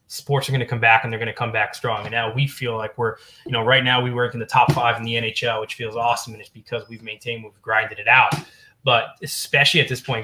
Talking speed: 285 wpm